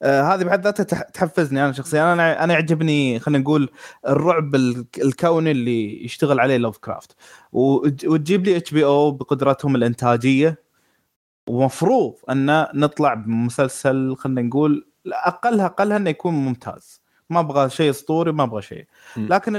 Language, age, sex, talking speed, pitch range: Arabic, 20-39, male, 135 wpm, 135-180 Hz